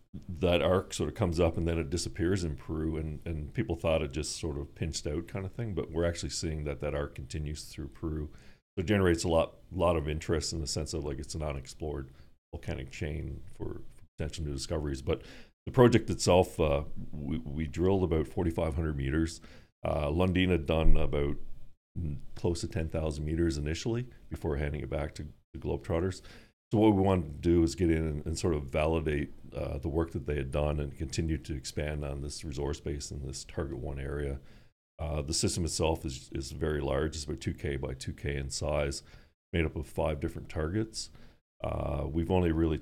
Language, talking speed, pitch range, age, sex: English, 200 wpm, 75-85 Hz, 40-59, male